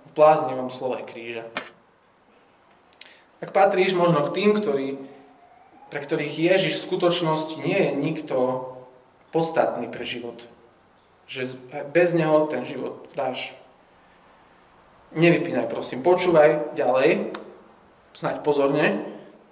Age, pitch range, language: 30-49, 130-165 Hz, Slovak